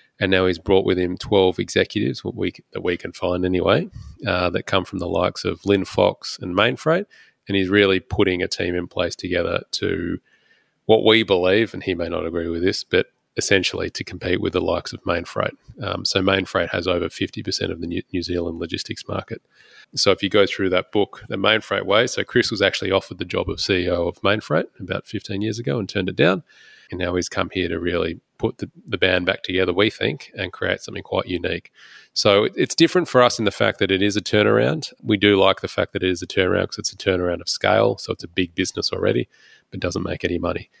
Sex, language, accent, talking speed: male, English, Australian, 235 wpm